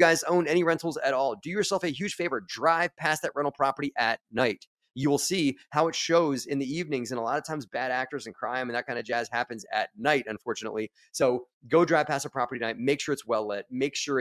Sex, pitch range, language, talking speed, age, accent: male, 125-160 Hz, English, 250 wpm, 30-49, American